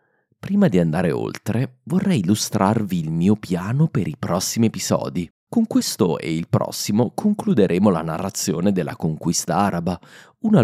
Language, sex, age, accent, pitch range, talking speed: Italian, male, 30-49, native, 90-135 Hz, 140 wpm